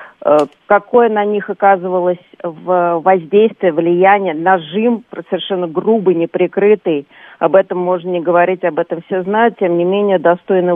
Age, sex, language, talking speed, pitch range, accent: 40-59, female, Russian, 130 wpm, 165-205 Hz, native